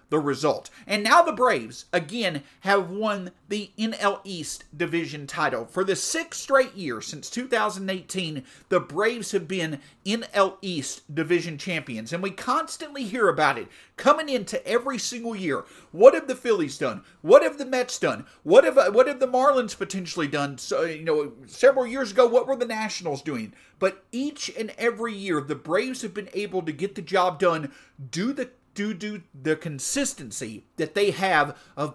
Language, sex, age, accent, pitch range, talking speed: English, male, 40-59, American, 170-235 Hz, 175 wpm